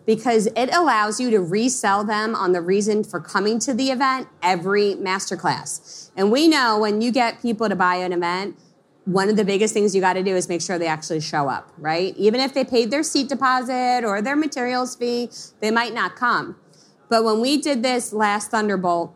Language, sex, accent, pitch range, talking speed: English, female, American, 180-240 Hz, 210 wpm